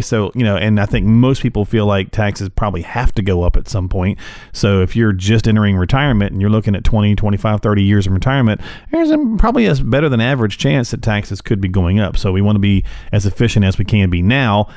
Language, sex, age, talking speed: English, male, 40-59, 245 wpm